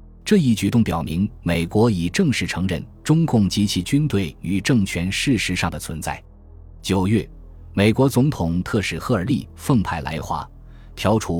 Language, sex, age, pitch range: Chinese, male, 20-39, 85-115 Hz